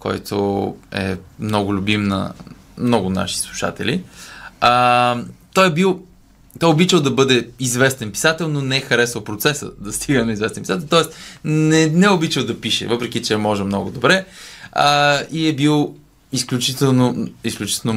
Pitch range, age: 105-140 Hz, 20-39